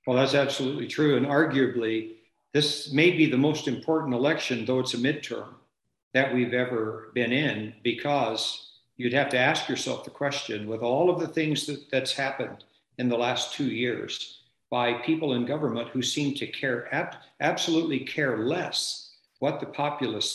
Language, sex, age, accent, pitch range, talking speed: English, male, 60-79, American, 120-145 Hz, 165 wpm